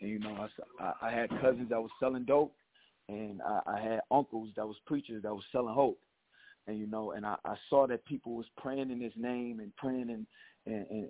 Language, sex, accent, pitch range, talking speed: English, male, American, 105-125 Hz, 220 wpm